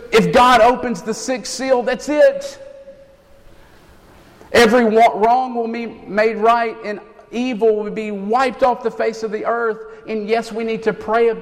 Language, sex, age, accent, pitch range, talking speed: English, male, 50-69, American, 145-220 Hz, 165 wpm